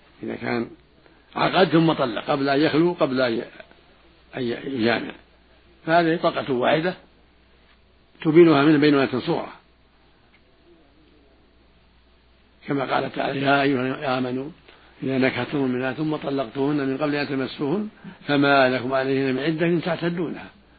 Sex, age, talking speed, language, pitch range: male, 60-79, 120 wpm, Arabic, 120-155 Hz